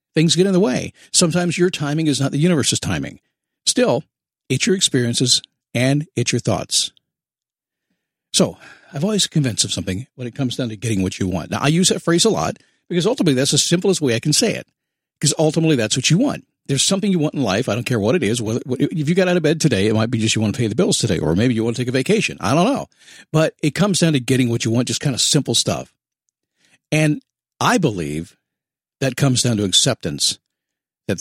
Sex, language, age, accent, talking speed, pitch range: male, English, 50-69, American, 235 wpm, 115-160 Hz